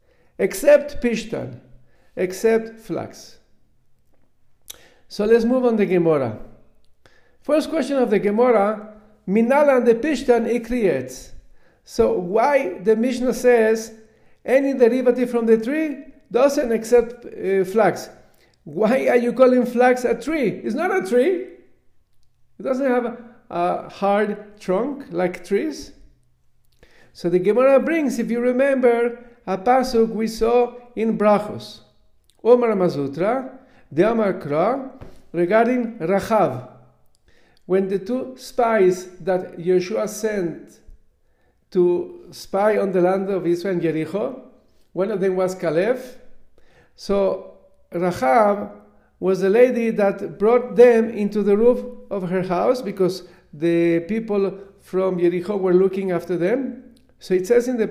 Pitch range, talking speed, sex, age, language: 185-245 Hz, 125 wpm, male, 50-69, English